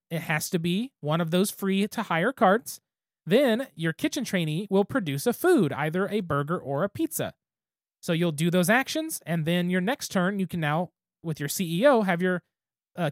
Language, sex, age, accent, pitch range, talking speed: English, male, 20-39, American, 165-215 Hz, 190 wpm